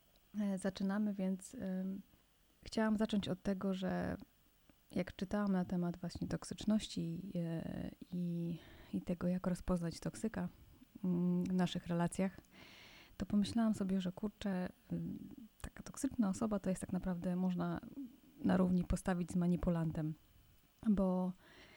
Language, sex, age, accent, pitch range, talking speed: Polish, female, 20-39, native, 175-200 Hz, 115 wpm